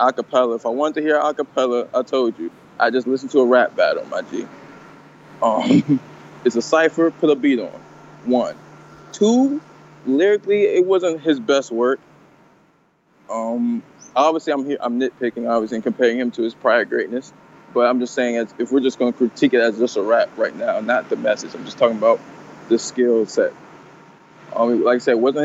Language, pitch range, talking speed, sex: English, 120-150 Hz, 195 wpm, male